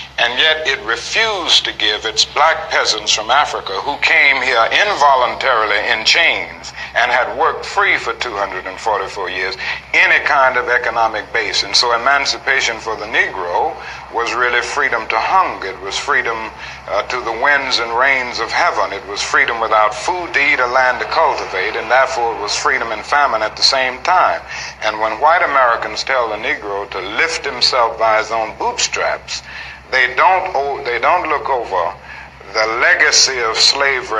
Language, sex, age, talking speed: English, male, 60-79, 170 wpm